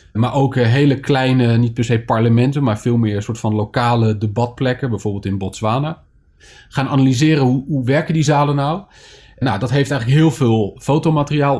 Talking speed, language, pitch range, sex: 175 wpm, English, 110-135 Hz, male